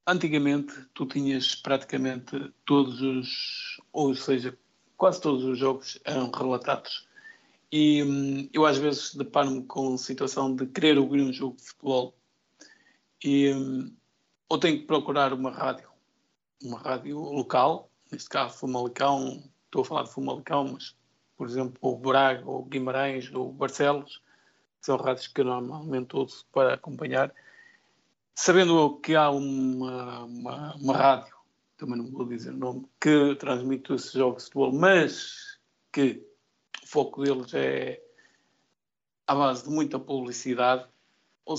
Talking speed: 140 wpm